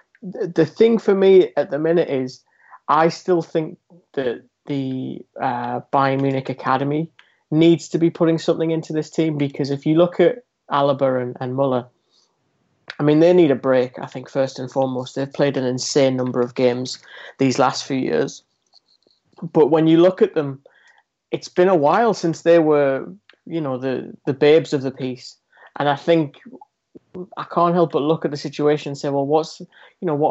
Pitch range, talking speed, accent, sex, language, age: 130-160 Hz, 190 wpm, British, male, English, 20-39